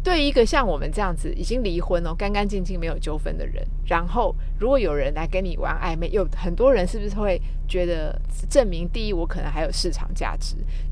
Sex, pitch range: female, 145-215 Hz